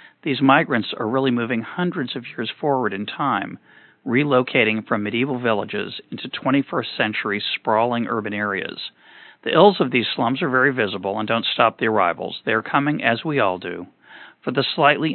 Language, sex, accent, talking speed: English, male, American, 175 wpm